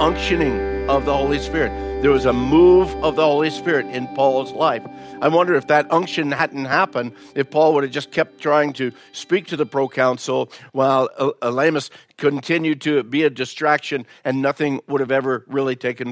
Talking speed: 180 wpm